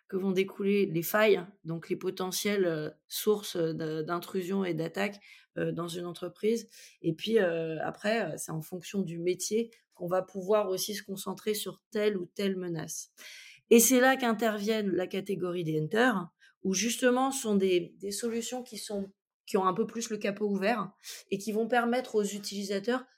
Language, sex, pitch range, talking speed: French, female, 175-215 Hz, 170 wpm